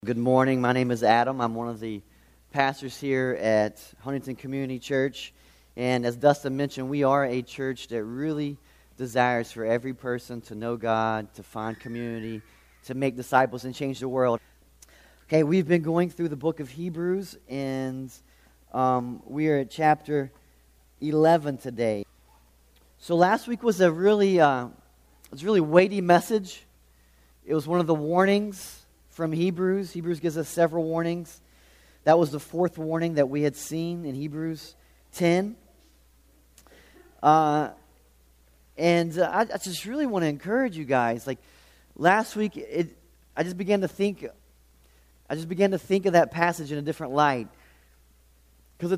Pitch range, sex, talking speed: 110-170 Hz, male, 160 wpm